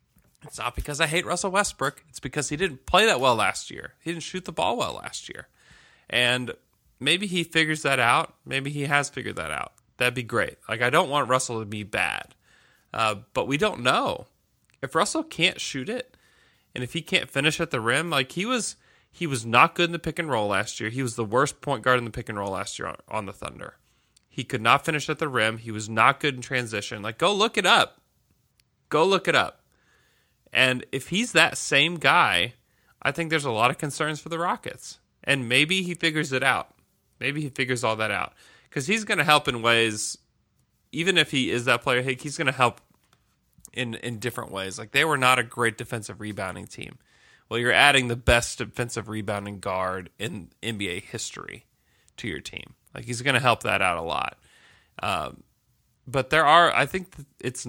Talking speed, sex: 215 wpm, male